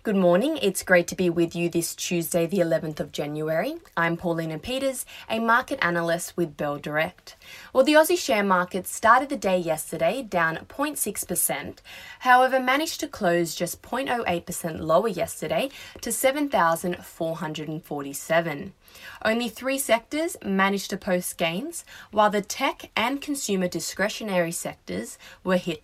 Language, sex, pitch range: English, female, 170-240 Hz